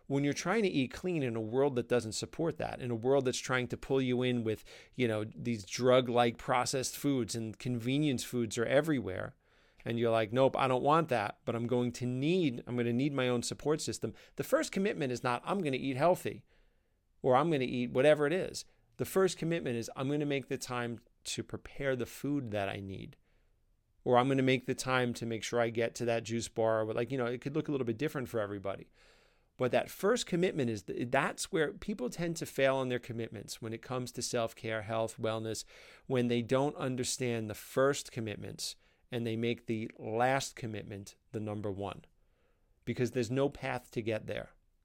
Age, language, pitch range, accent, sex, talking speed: 40-59, English, 115-140 Hz, American, male, 215 wpm